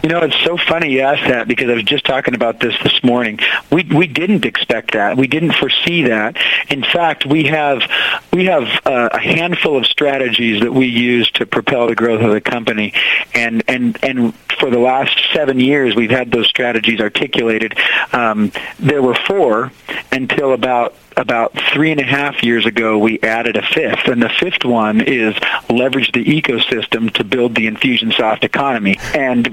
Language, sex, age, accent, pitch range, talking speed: English, male, 50-69, American, 115-145 Hz, 185 wpm